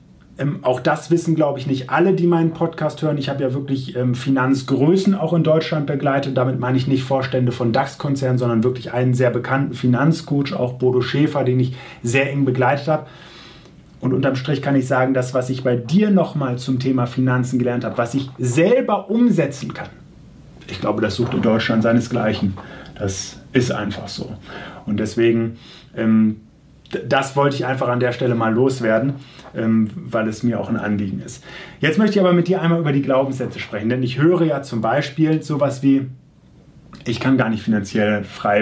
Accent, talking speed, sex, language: German, 190 wpm, male, German